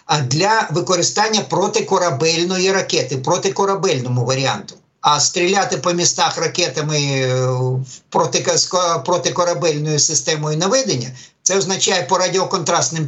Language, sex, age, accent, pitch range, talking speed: Ukrainian, male, 50-69, native, 155-195 Hz, 85 wpm